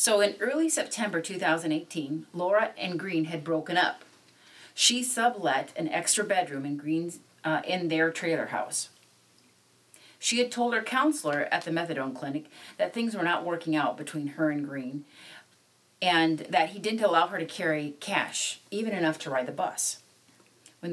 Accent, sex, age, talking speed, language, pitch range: American, female, 40-59, 165 wpm, English, 150-200 Hz